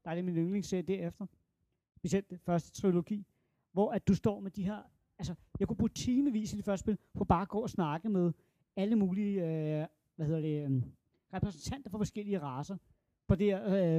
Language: Danish